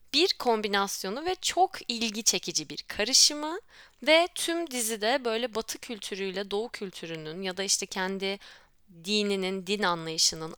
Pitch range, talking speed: 185-235 Hz, 130 wpm